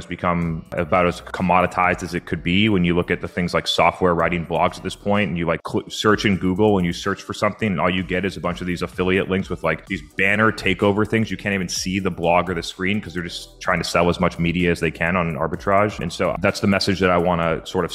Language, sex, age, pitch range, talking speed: English, male, 30-49, 90-100 Hz, 290 wpm